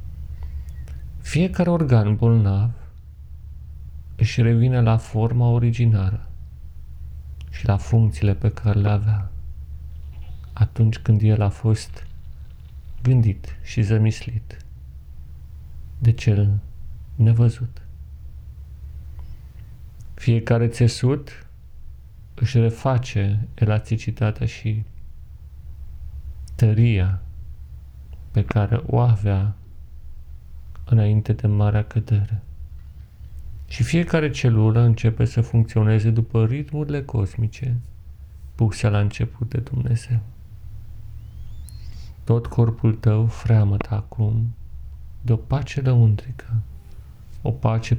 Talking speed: 80 wpm